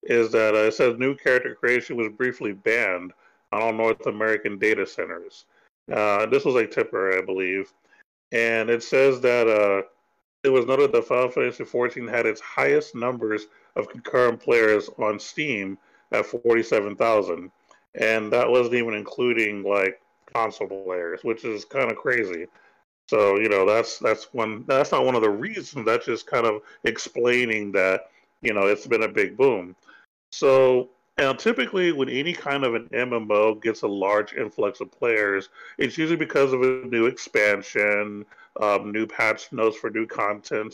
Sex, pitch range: male, 110-145 Hz